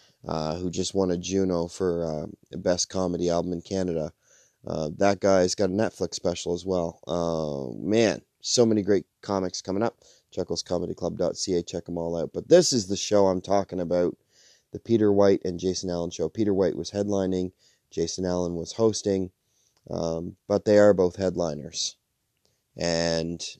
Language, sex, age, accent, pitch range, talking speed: English, male, 30-49, American, 85-100 Hz, 165 wpm